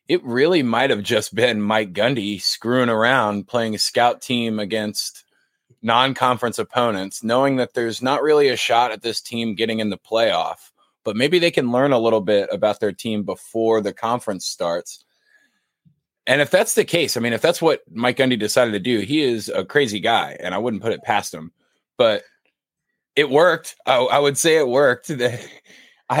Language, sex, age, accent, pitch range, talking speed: English, male, 20-39, American, 105-125 Hz, 190 wpm